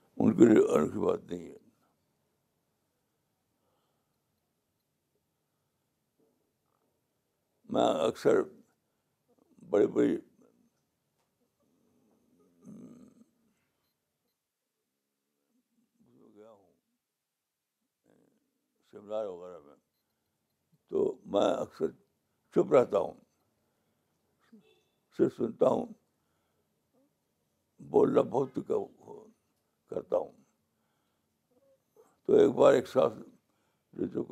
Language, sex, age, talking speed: Urdu, male, 60-79, 45 wpm